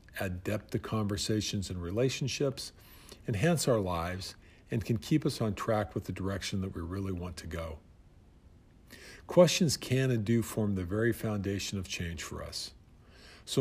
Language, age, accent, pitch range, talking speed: English, 50-69, American, 90-120 Hz, 165 wpm